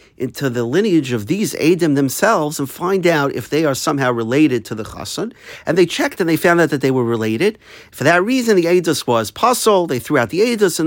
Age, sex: 50-69, male